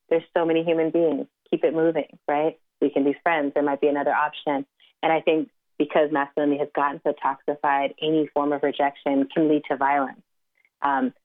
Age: 30-49